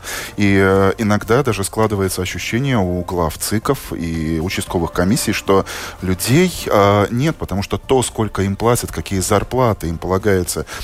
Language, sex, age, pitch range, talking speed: Russian, male, 20-39, 90-110 Hz, 145 wpm